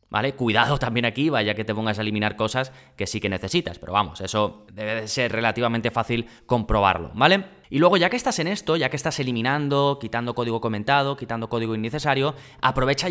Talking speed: 195 wpm